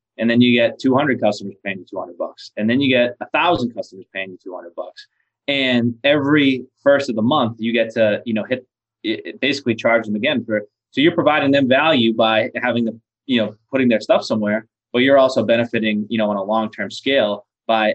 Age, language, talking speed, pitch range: 20-39, English, 215 wpm, 110-135 Hz